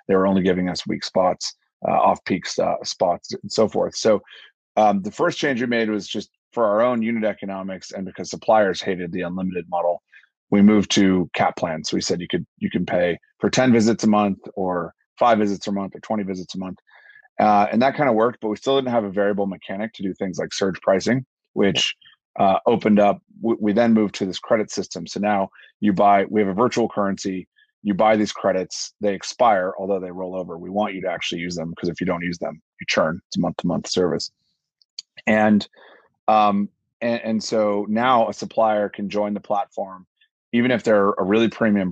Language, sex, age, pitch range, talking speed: English, male, 30-49, 95-110 Hz, 215 wpm